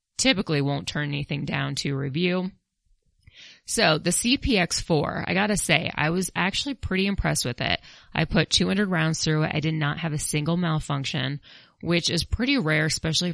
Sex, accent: female, American